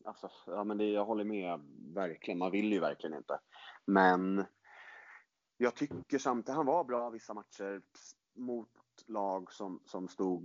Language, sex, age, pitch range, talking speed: Swedish, male, 30-49, 85-100 Hz, 155 wpm